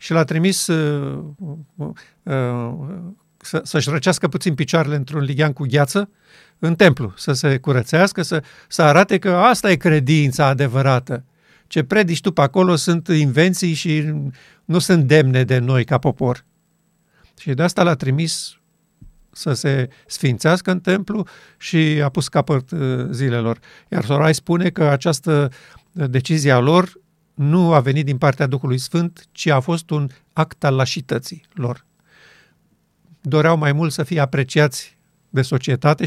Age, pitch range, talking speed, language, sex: 50-69, 140-170 Hz, 140 wpm, Romanian, male